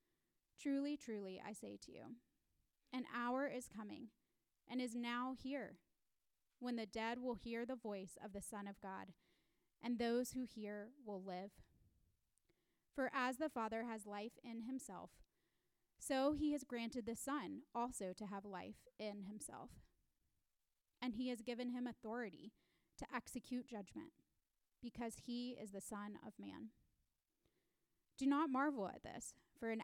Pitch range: 220-265 Hz